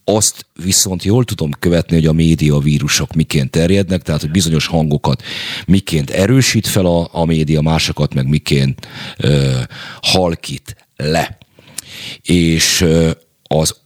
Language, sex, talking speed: Hungarian, male, 115 wpm